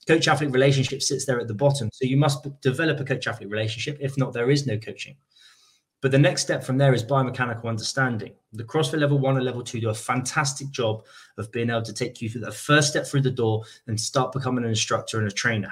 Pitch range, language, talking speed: 115-145 Hz, English, 235 wpm